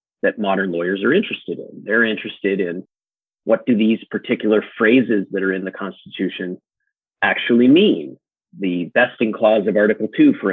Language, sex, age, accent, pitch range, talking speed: English, male, 30-49, American, 100-115 Hz, 160 wpm